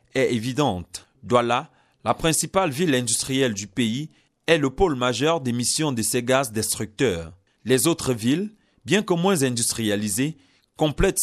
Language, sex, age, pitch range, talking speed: English, male, 40-59, 115-145 Hz, 140 wpm